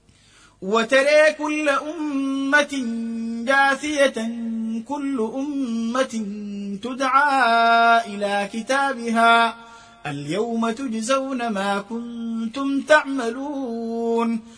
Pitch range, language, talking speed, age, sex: 230-275 Hz, Arabic, 60 wpm, 30-49, male